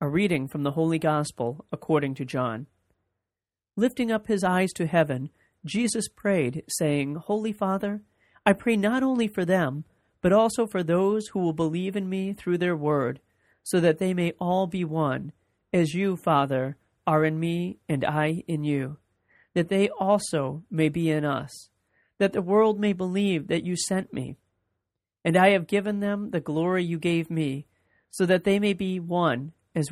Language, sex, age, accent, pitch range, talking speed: English, male, 40-59, American, 145-190 Hz, 175 wpm